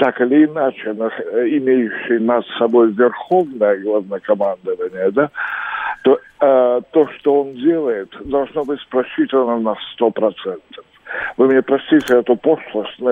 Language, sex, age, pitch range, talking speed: Russian, male, 60-79, 125-180 Hz, 120 wpm